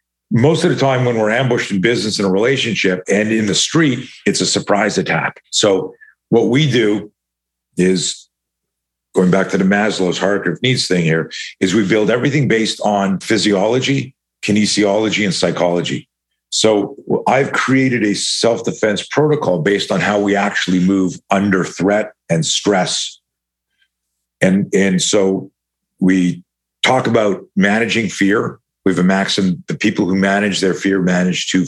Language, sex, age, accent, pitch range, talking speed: English, male, 50-69, American, 90-110 Hz, 155 wpm